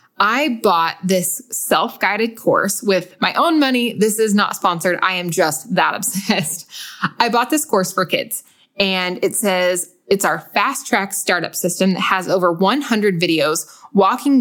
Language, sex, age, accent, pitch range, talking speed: English, female, 20-39, American, 180-220 Hz, 160 wpm